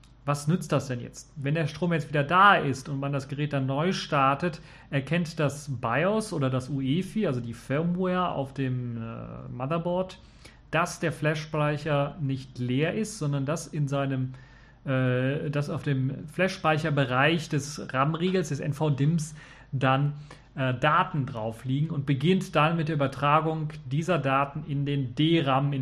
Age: 40-59